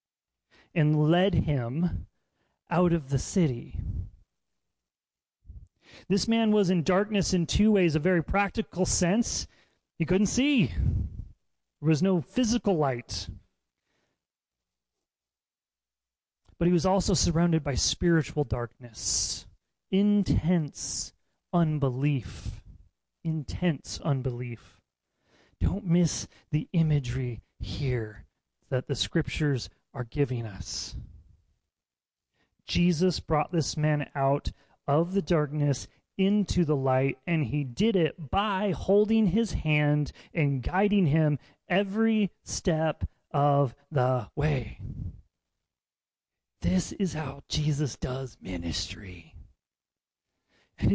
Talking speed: 100 wpm